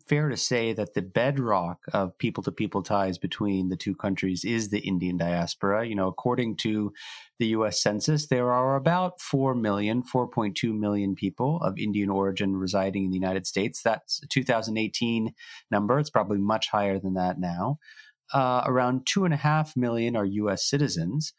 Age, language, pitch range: 30-49, English, 100-145 Hz